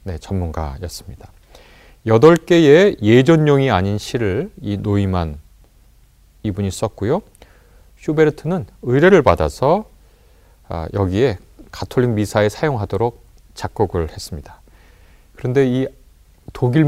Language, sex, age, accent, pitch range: Korean, male, 30-49, native, 90-140 Hz